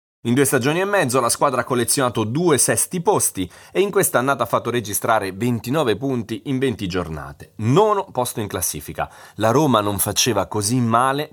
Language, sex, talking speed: Italian, male, 175 wpm